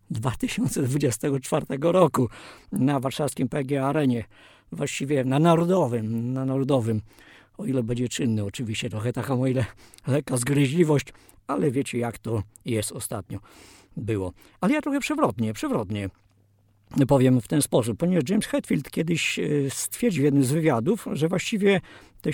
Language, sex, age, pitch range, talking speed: Polish, male, 50-69, 110-145 Hz, 135 wpm